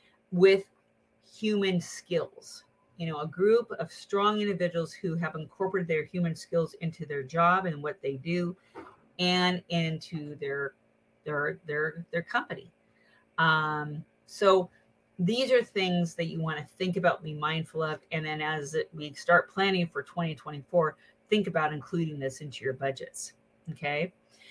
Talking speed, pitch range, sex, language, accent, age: 145 wpm, 155-195 Hz, female, English, American, 30-49